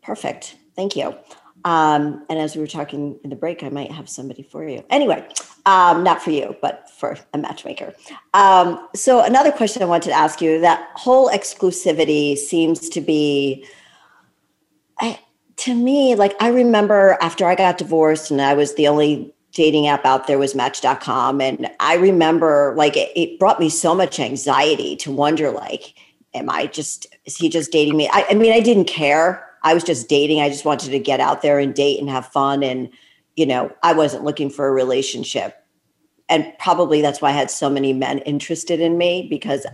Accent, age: American, 50-69